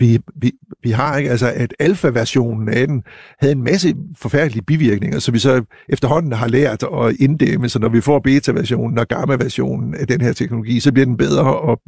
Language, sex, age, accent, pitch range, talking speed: Danish, male, 60-79, native, 120-145 Hz, 195 wpm